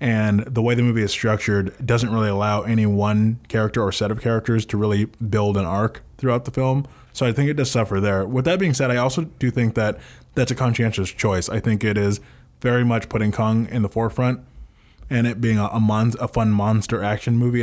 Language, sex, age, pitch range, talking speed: English, male, 20-39, 105-125 Hz, 230 wpm